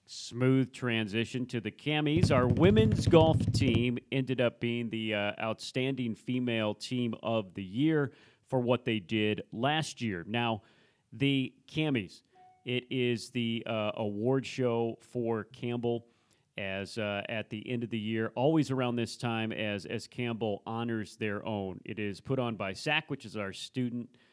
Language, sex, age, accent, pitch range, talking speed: English, male, 40-59, American, 110-125 Hz, 160 wpm